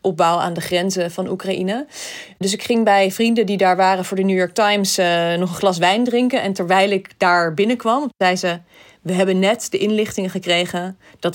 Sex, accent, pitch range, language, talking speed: female, Dutch, 160-200 Hz, Dutch, 205 wpm